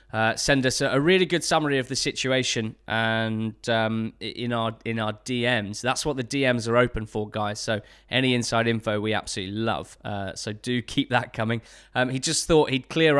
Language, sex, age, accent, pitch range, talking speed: English, male, 20-39, British, 115-140 Hz, 195 wpm